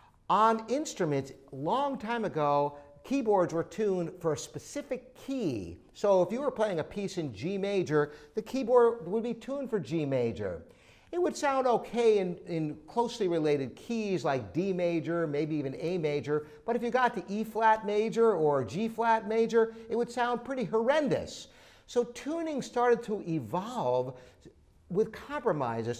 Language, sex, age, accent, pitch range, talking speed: English, male, 50-69, American, 155-235 Hz, 160 wpm